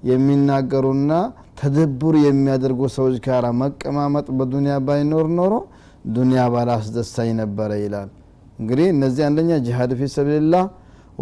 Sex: male